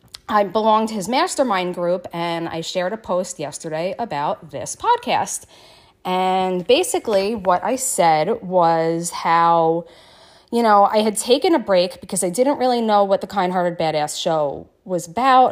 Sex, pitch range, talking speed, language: female, 175-245 Hz, 160 wpm, English